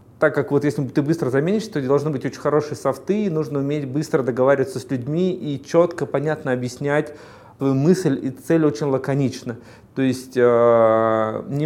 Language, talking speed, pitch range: Russian, 170 wpm, 125-150 Hz